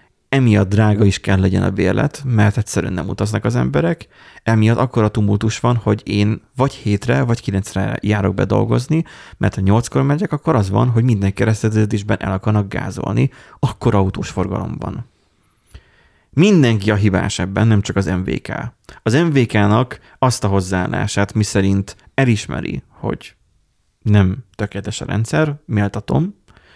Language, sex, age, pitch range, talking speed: Hungarian, male, 30-49, 100-120 Hz, 140 wpm